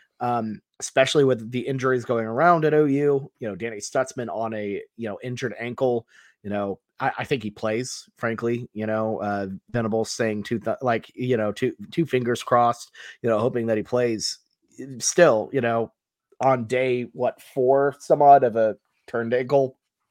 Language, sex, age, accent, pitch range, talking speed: English, male, 30-49, American, 115-140 Hz, 180 wpm